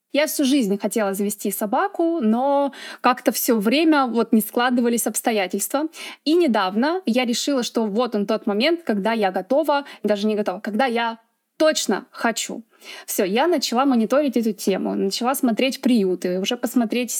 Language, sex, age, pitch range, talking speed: Russian, female, 20-39, 215-265 Hz, 155 wpm